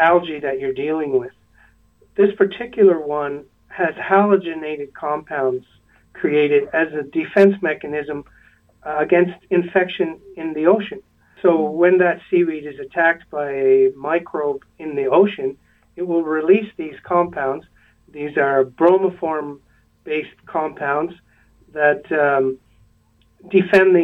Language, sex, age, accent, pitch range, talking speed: English, male, 50-69, American, 145-195 Hz, 120 wpm